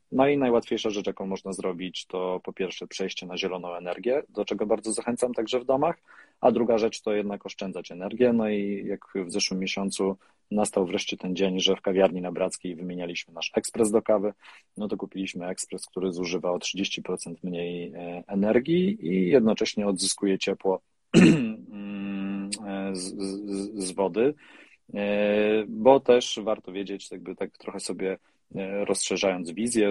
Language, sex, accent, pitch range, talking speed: Polish, male, native, 90-105 Hz, 155 wpm